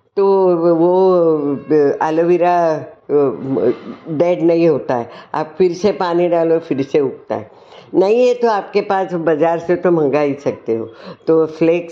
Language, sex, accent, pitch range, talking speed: Hindi, female, native, 150-185 Hz, 150 wpm